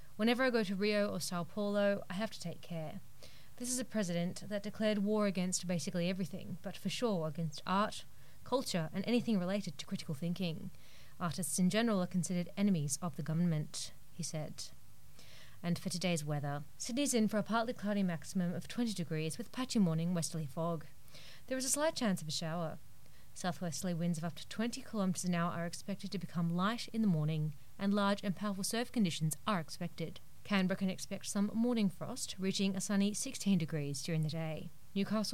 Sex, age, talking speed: female, 30-49, 190 wpm